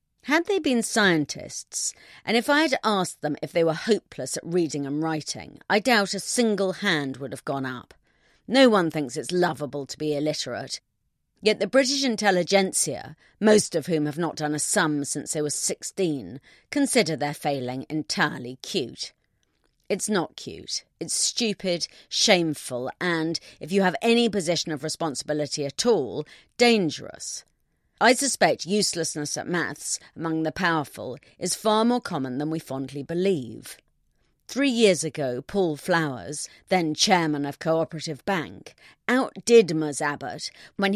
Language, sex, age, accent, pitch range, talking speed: English, female, 40-59, British, 150-205 Hz, 150 wpm